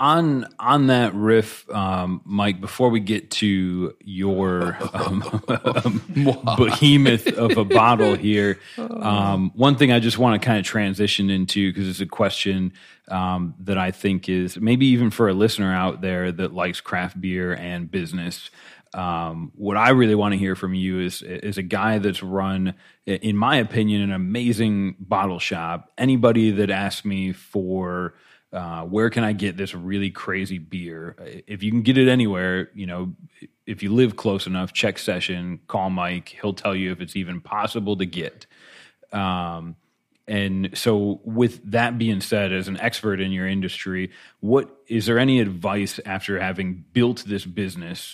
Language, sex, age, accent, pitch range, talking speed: English, male, 30-49, American, 90-110 Hz, 170 wpm